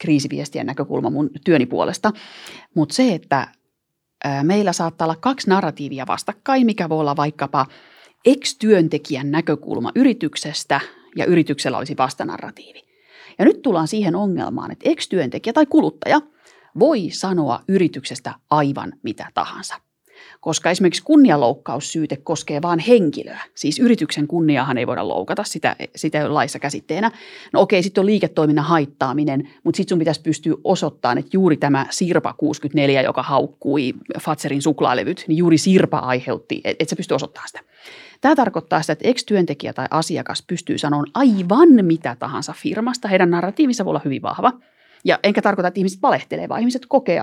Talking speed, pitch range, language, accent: 145 wpm, 150-215 Hz, Finnish, native